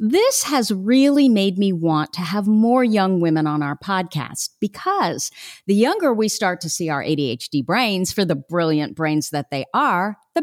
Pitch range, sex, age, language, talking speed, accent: 170-255 Hz, female, 40-59, English, 185 wpm, American